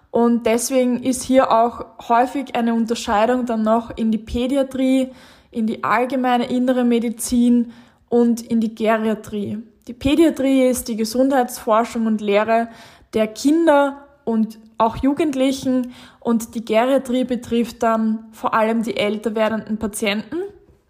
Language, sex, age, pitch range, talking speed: German, female, 10-29, 225-260 Hz, 130 wpm